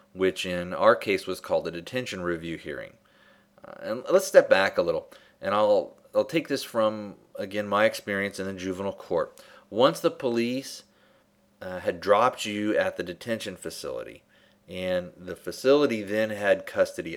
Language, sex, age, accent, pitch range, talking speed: English, male, 30-49, American, 95-130 Hz, 165 wpm